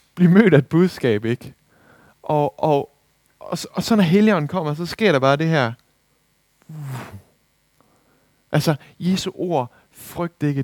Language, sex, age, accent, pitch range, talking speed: Danish, male, 60-79, native, 120-160 Hz, 150 wpm